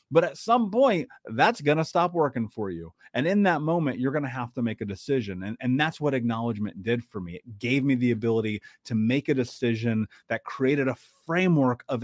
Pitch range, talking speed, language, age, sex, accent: 120-160 Hz, 225 wpm, English, 30-49, male, American